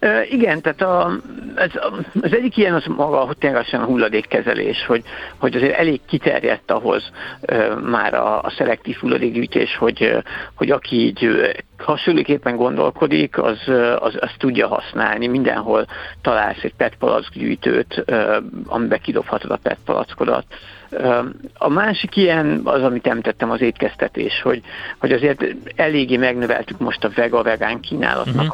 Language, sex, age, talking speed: Hungarian, male, 60-79, 130 wpm